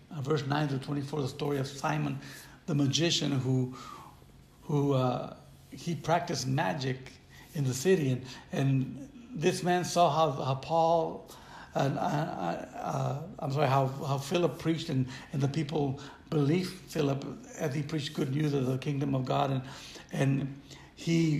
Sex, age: male, 70-89